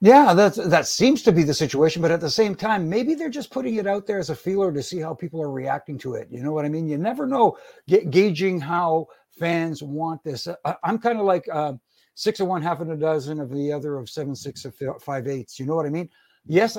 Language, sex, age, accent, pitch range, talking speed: English, male, 60-79, American, 150-185 Hz, 240 wpm